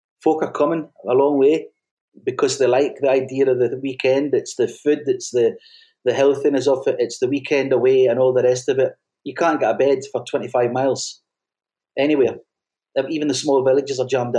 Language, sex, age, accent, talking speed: English, male, 30-49, British, 200 wpm